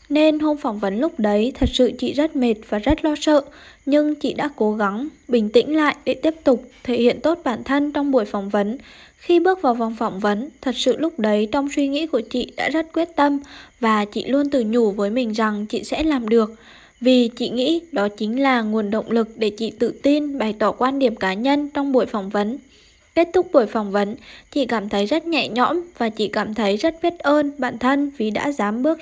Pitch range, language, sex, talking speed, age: 220-285 Hz, Vietnamese, female, 235 wpm, 10-29